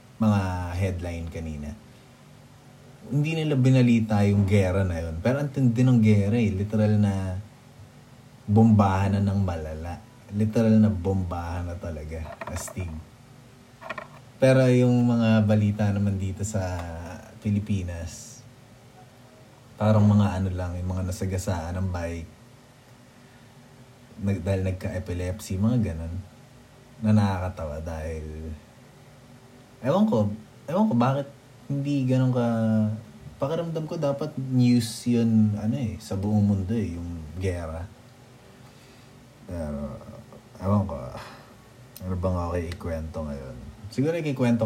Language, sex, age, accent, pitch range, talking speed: English, male, 20-39, Filipino, 95-125 Hz, 110 wpm